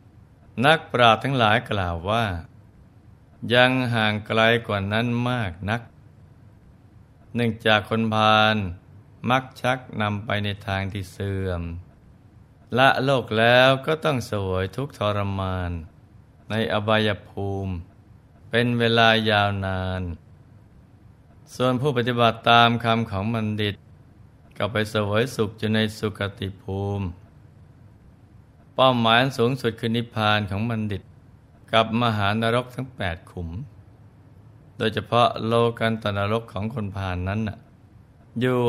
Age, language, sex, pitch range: 20-39, Thai, male, 100-120 Hz